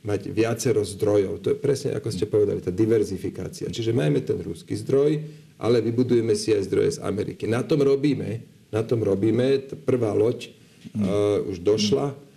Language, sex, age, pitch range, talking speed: Slovak, male, 50-69, 105-125 Hz, 170 wpm